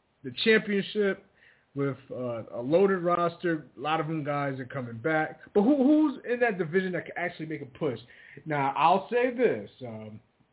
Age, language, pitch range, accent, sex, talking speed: 30-49, English, 130-165 Hz, American, male, 175 wpm